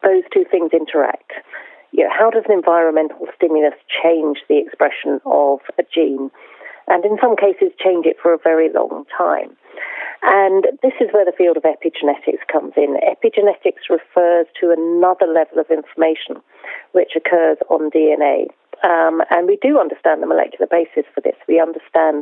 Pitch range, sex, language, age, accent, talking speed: 160-210 Hz, female, English, 40-59, British, 160 wpm